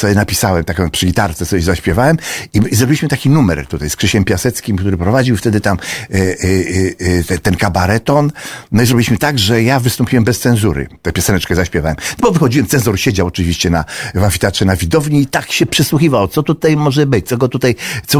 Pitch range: 105-145 Hz